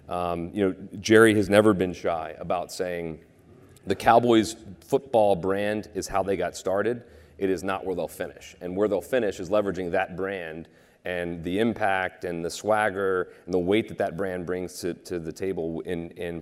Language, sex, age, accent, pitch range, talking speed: English, male, 30-49, American, 85-100 Hz, 190 wpm